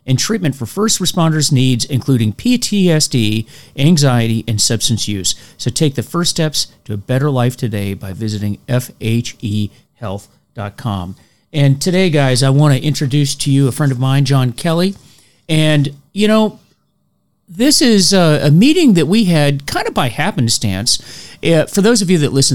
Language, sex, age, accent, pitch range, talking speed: English, male, 40-59, American, 115-145 Hz, 160 wpm